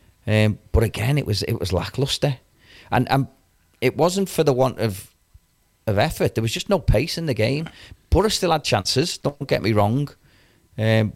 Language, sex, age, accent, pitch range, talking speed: English, male, 30-49, British, 95-120 Hz, 190 wpm